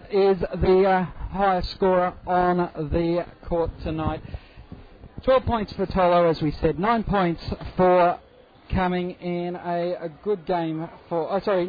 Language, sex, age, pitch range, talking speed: English, male, 50-69, 160-190 Hz, 140 wpm